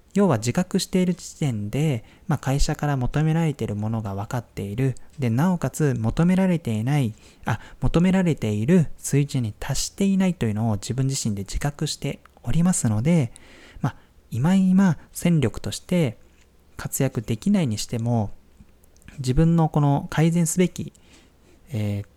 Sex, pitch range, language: male, 110-160 Hz, Japanese